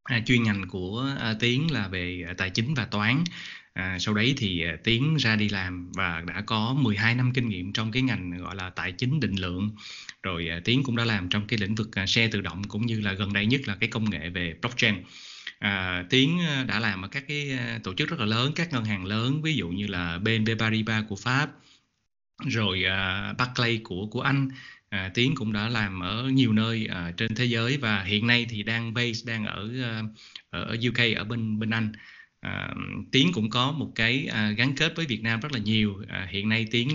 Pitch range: 100-125 Hz